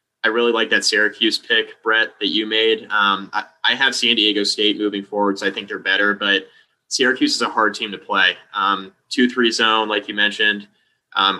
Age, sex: 20-39, male